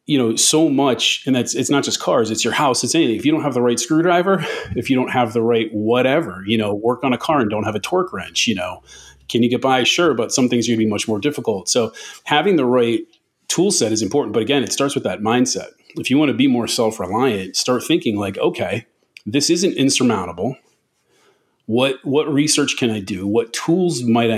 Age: 30-49